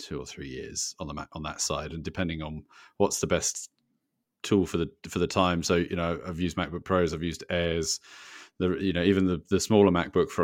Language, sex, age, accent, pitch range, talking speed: English, male, 40-59, British, 85-110 Hz, 235 wpm